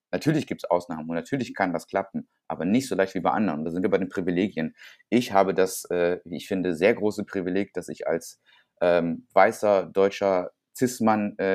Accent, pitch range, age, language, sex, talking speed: German, 90-100 Hz, 30-49, German, male, 210 wpm